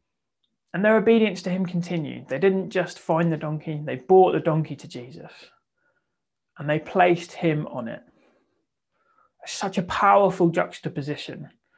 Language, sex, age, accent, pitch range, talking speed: English, male, 30-49, British, 145-180 Hz, 145 wpm